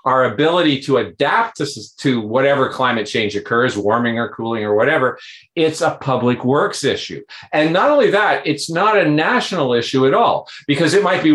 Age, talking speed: 50-69, 180 wpm